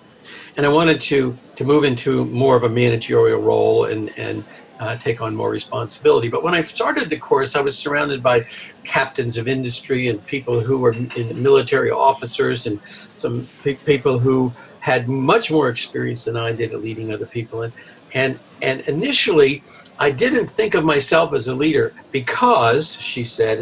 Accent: American